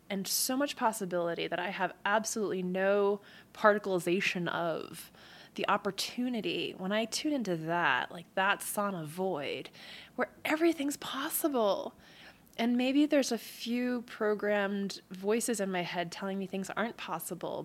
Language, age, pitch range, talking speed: English, 20-39, 190-260 Hz, 135 wpm